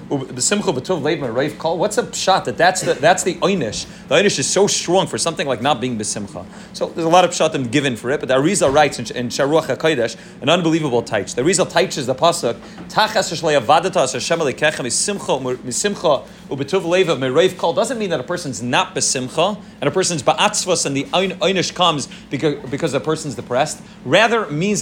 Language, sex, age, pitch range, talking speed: English, male, 30-49, 145-195 Hz, 165 wpm